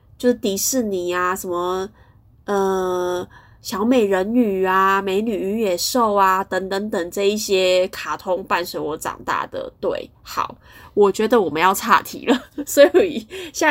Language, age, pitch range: Chinese, 20-39, 180-240 Hz